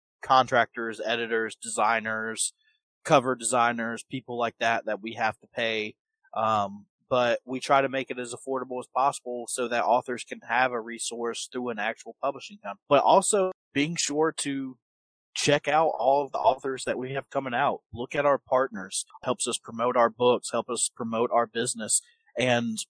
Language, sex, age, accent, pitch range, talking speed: English, male, 30-49, American, 115-130 Hz, 175 wpm